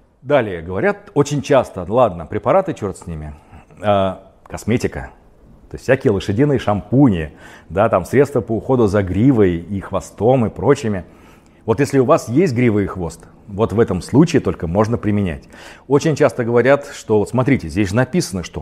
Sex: male